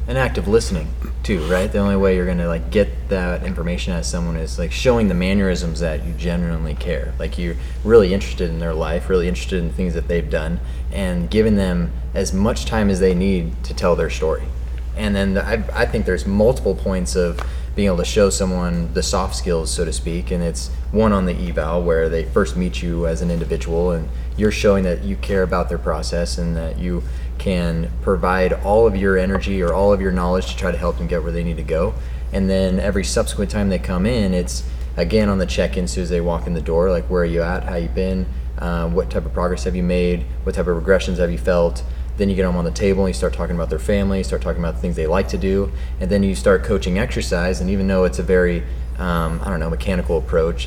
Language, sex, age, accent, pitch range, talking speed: English, male, 20-39, American, 80-95 Hz, 245 wpm